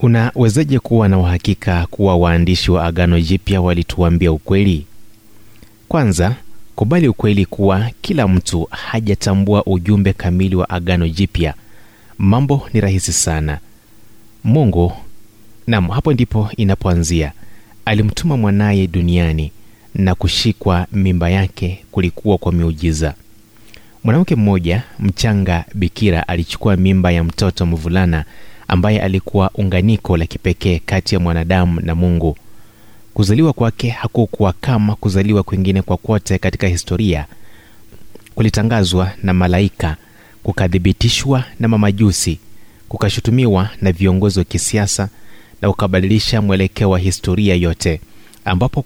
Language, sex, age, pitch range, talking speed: Swahili, male, 30-49, 90-110 Hz, 110 wpm